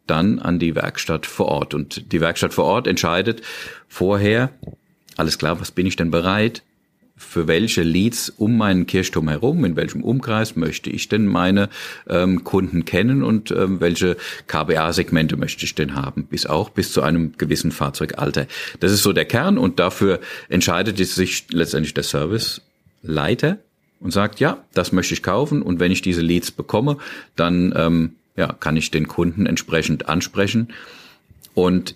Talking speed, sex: 165 wpm, male